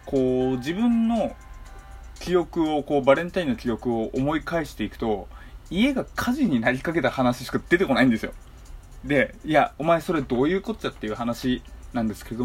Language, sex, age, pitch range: Japanese, male, 20-39, 115-185 Hz